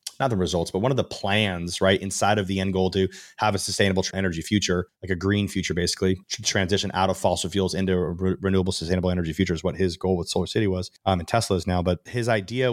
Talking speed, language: 250 wpm, English